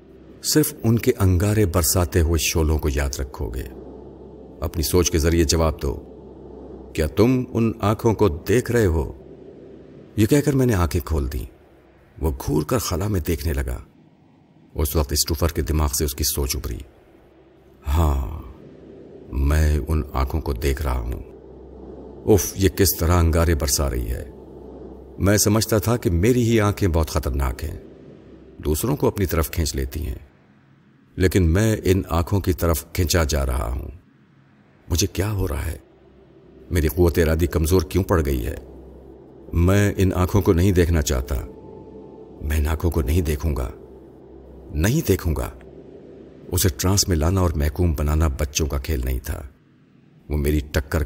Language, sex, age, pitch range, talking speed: Urdu, male, 50-69, 75-95 Hz, 160 wpm